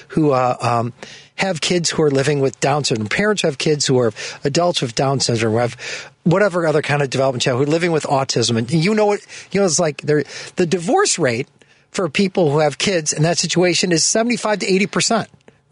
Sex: male